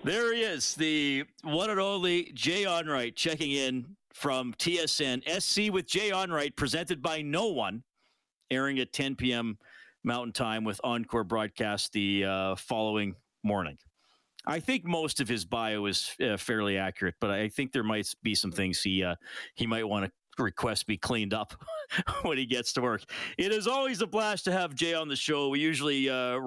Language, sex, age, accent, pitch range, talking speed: English, male, 40-59, American, 110-160 Hz, 185 wpm